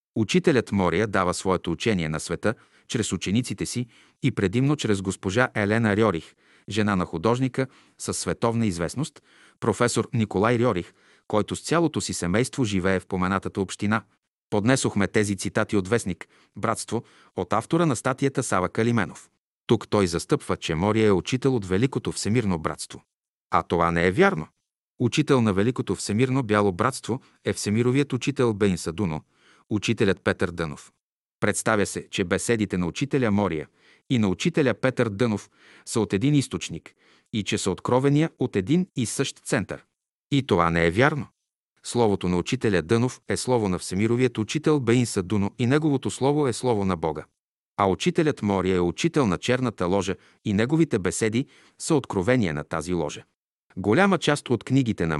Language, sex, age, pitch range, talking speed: Bulgarian, male, 40-59, 95-130 Hz, 160 wpm